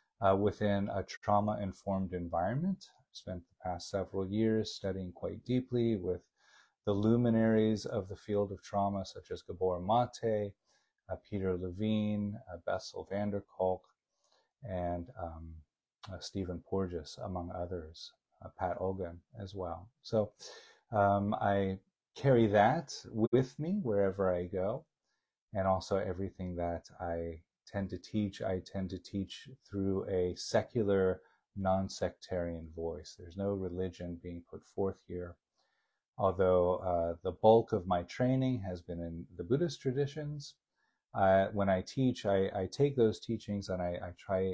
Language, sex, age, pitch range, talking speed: English, male, 30-49, 90-105 Hz, 145 wpm